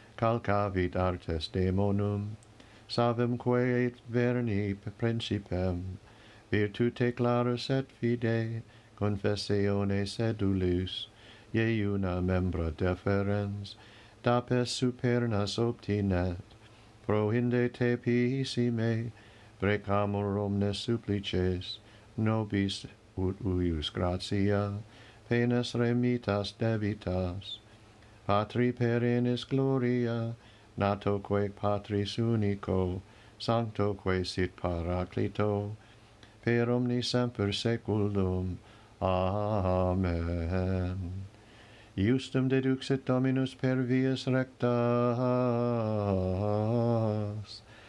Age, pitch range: 50-69, 100-120 Hz